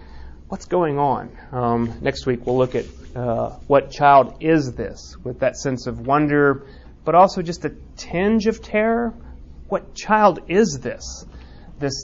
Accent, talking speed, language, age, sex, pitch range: American, 155 wpm, English, 30-49, male, 120-155 Hz